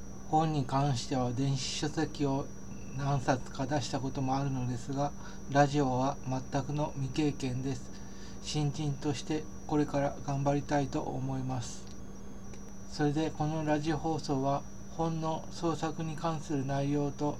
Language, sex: Japanese, male